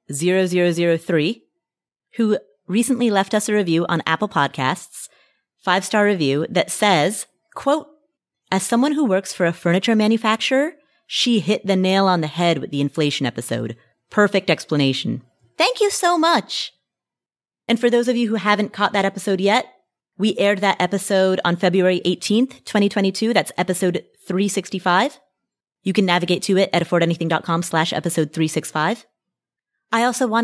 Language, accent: English, American